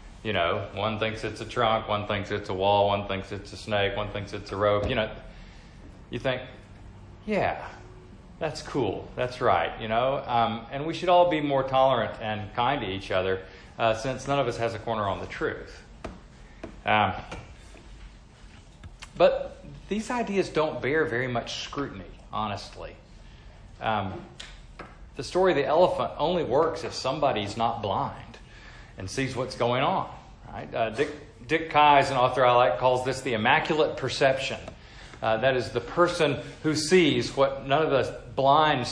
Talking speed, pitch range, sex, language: 170 wpm, 105-140 Hz, male, English